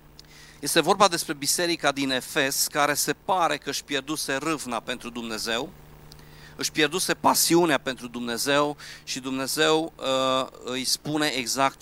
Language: Romanian